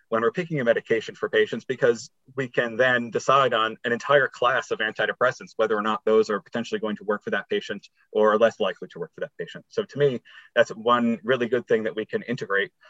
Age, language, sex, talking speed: 30-49, English, male, 235 wpm